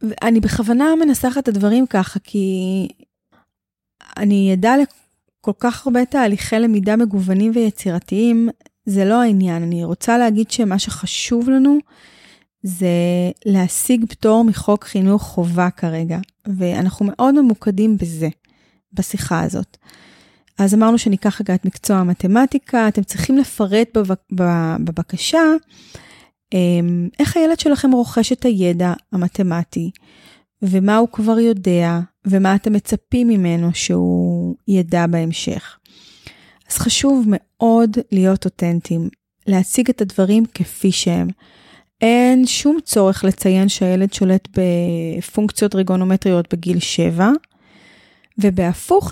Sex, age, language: female, 30-49, Hebrew